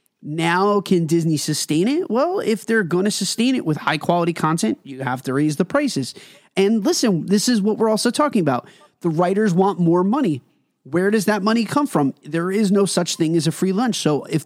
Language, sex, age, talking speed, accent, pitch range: English, male, 30-49, 220 wpm, American, 160-230 Hz